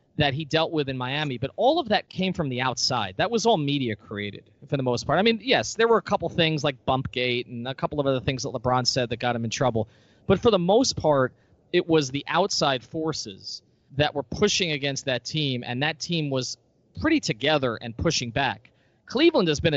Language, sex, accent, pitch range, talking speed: English, male, American, 120-155 Hz, 230 wpm